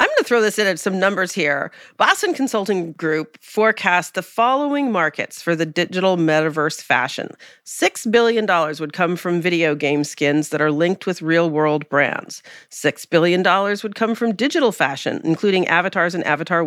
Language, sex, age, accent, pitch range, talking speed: English, female, 40-59, American, 150-195 Hz, 170 wpm